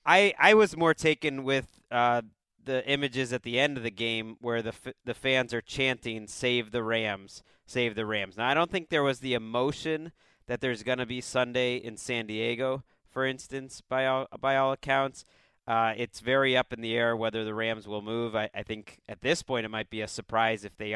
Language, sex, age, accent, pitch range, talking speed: English, male, 30-49, American, 115-135 Hz, 220 wpm